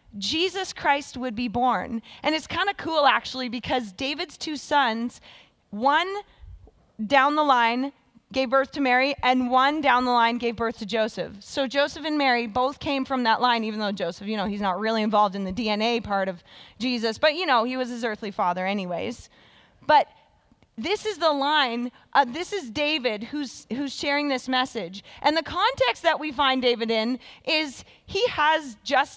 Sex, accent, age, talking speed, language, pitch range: female, American, 20-39, 185 wpm, English, 230-300 Hz